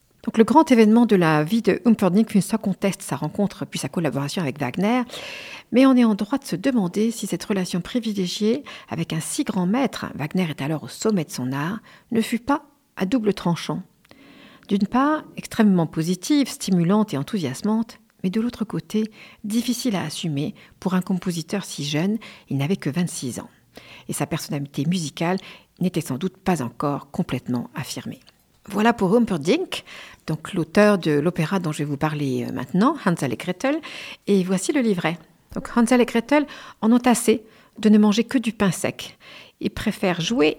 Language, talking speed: French, 175 wpm